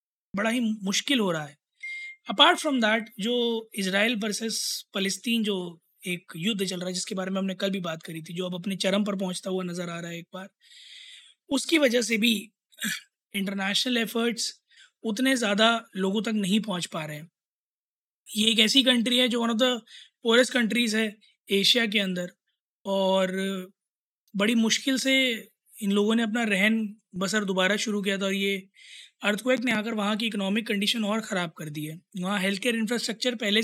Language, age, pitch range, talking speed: Hindi, 20-39, 195-235 Hz, 185 wpm